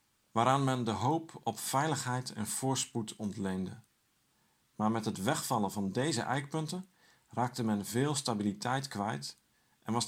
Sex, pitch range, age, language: male, 105-140 Hz, 50-69, Dutch